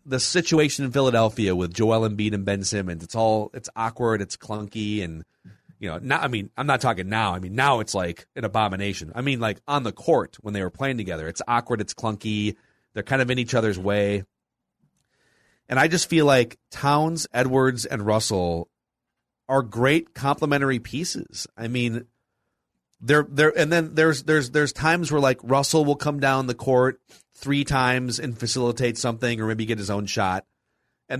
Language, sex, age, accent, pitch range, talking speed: English, male, 30-49, American, 105-135 Hz, 190 wpm